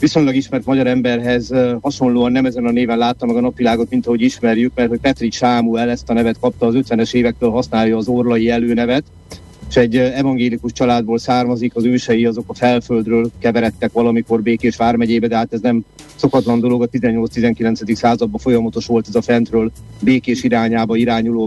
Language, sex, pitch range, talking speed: Hungarian, male, 120-135 Hz, 175 wpm